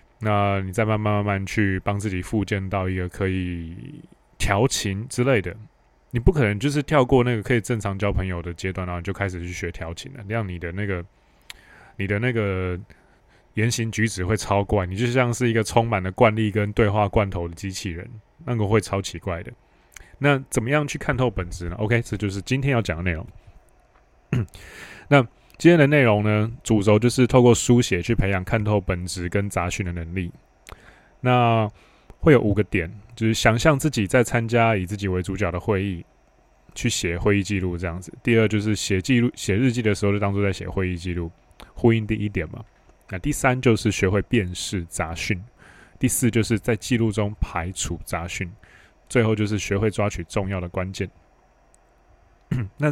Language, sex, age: Chinese, male, 20-39